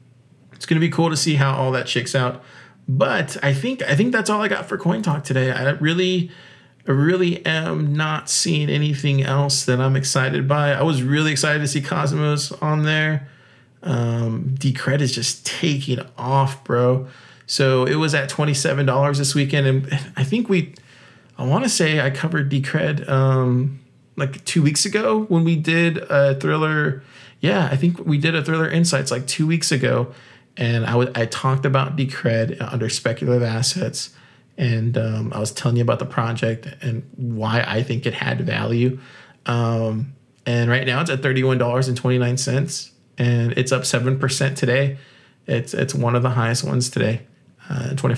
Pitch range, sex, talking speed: 125-150 Hz, male, 185 wpm